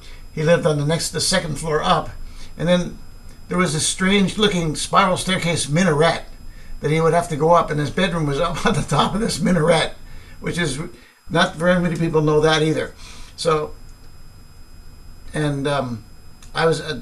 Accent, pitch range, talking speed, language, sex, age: American, 120-165 Hz, 175 wpm, English, male, 60-79